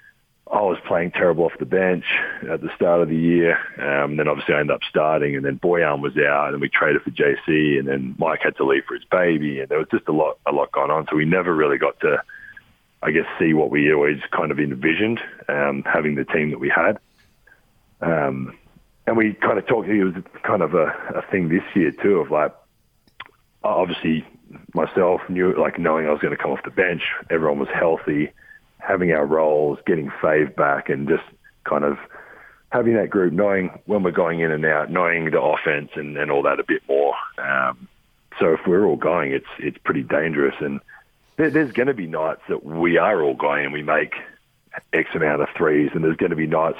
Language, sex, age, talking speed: English, male, 40-59, 220 wpm